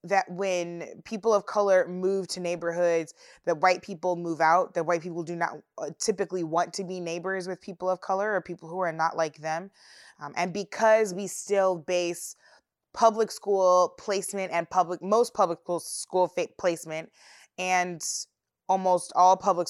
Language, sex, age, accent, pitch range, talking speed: English, female, 20-39, American, 165-195 Hz, 160 wpm